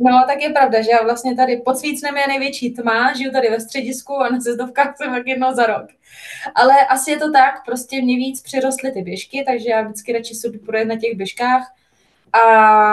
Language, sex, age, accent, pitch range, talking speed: Czech, female, 20-39, native, 210-240 Hz, 205 wpm